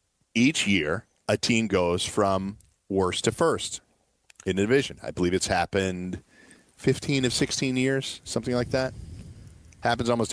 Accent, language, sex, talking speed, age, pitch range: American, English, male, 145 wpm, 40-59, 95-115 Hz